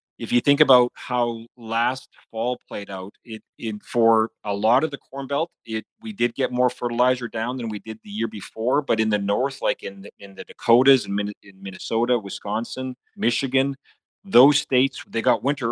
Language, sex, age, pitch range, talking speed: English, male, 30-49, 105-125 Hz, 190 wpm